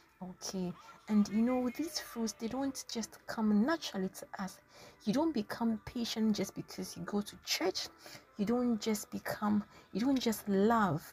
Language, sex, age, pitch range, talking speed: English, female, 30-49, 195-235 Hz, 165 wpm